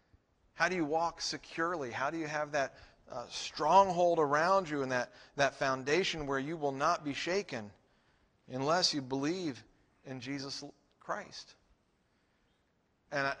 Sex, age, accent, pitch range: male, 40-59, American, 140-180 Hz